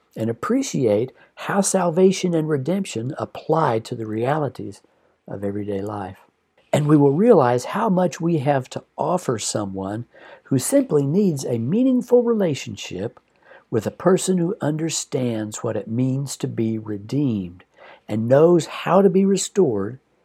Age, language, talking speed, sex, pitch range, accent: 60-79, English, 140 wpm, male, 110-160 Hz, American